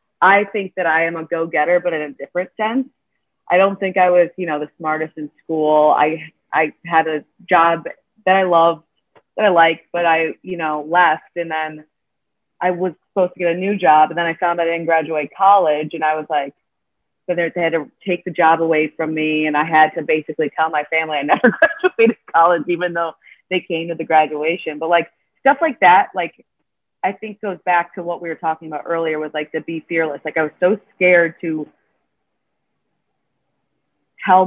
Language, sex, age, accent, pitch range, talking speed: English, female, 30-49, American, 155-180 Hz, 210 wpm